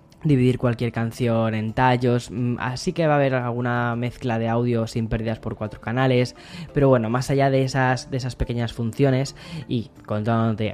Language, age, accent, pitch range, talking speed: Spanish, 10-29, Spanish, 115-135 Hz, 180 wpm